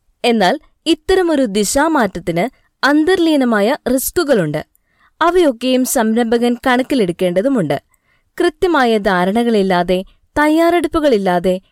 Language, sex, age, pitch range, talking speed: Malayalam, female, 20-39, 200-295 Hz, 55 wpm